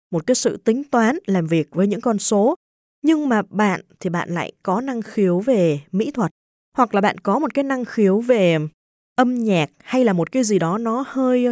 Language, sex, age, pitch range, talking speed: Vietnamese, female, 20-39, 175-240 Hz, 220 wpm